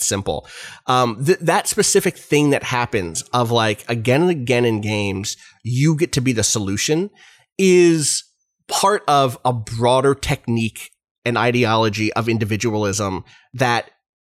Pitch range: 115-150 Hz